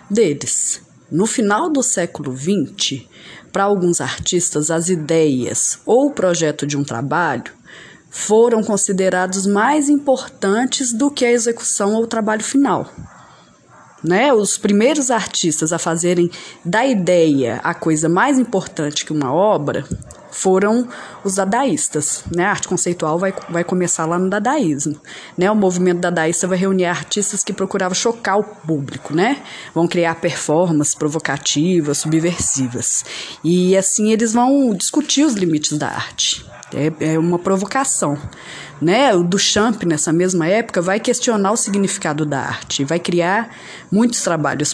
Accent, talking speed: Brazilian, 140 wpm